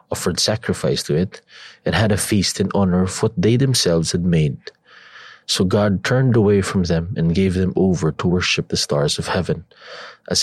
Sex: male